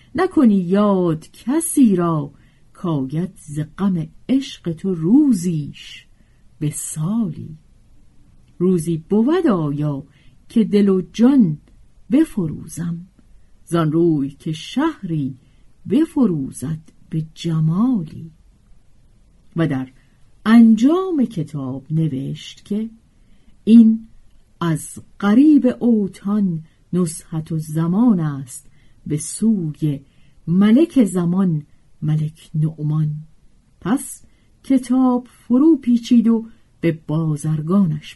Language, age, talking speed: Persian, 50-69, 80 wpm